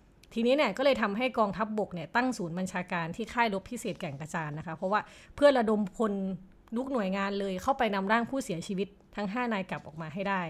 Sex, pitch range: female, 180-230 Hz